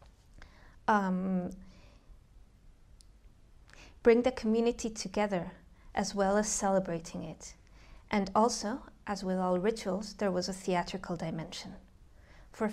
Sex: female